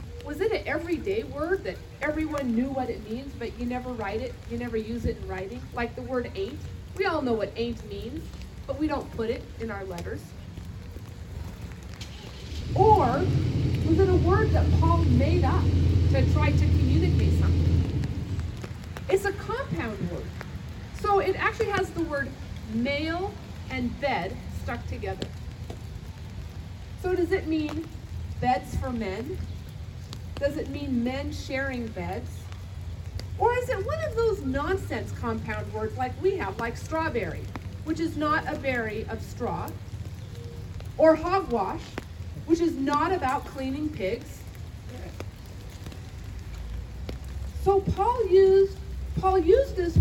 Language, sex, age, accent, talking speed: English, female, 40-59, American, 140 wpm